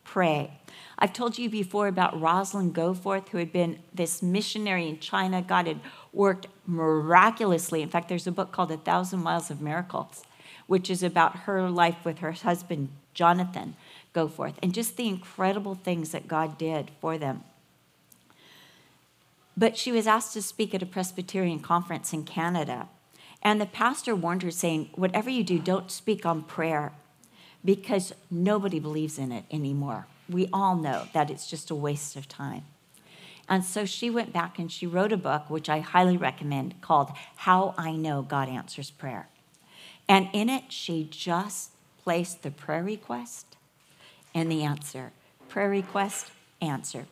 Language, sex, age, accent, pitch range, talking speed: English, female, 50-69, American, 155-190 Hz, 160 wpm